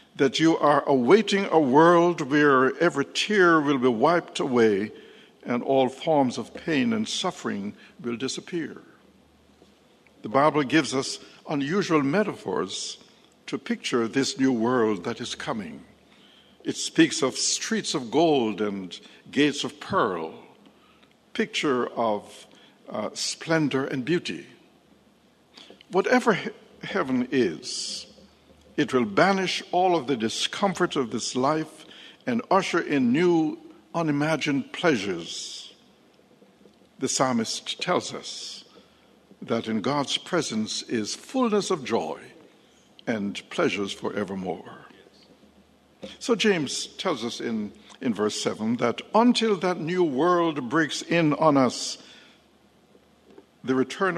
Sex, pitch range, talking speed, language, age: male, 130-200 Hz, 115 wpm, English, 60-79